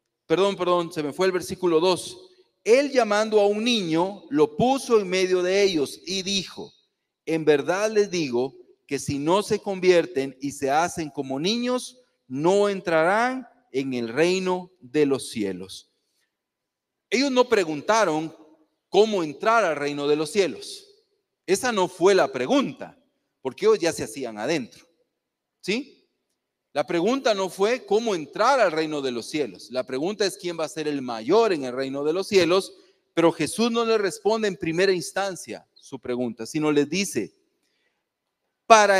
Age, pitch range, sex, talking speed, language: 40-59, 150-225 Hz, male, 160 wpm, Spanish